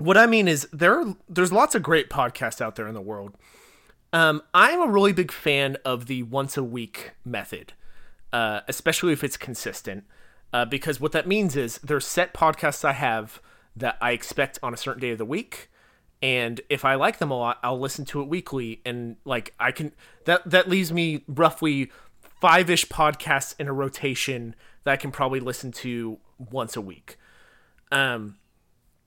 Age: 30-49